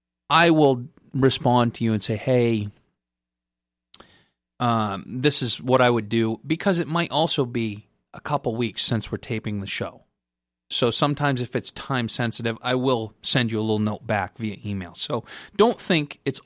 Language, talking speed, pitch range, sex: English, 175 wpm, 105-145 Hz, male